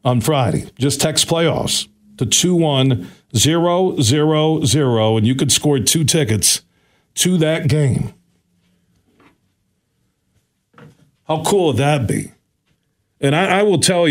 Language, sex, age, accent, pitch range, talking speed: English, male, 50-69, American, 115-155 Hz, 120 wpm